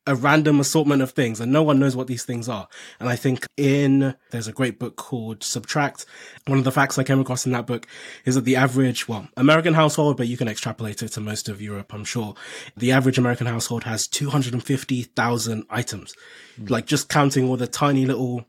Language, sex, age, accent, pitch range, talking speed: English, male, 20-39, British, 120-145 Hz, 210 wpm